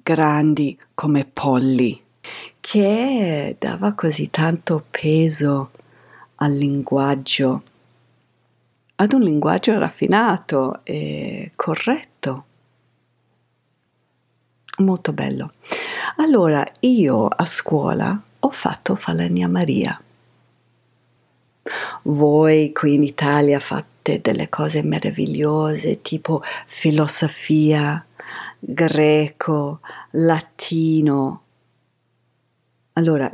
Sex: female